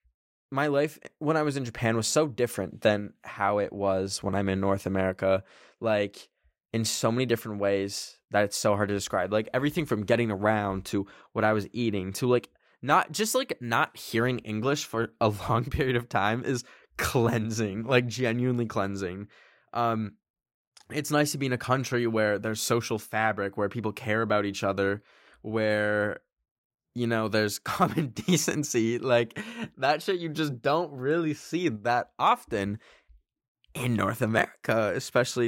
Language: English